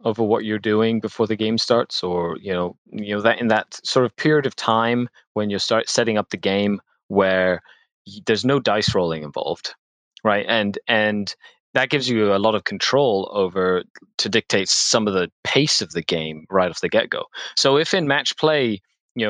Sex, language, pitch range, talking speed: male, English, 100-120 Hz, 205 wpm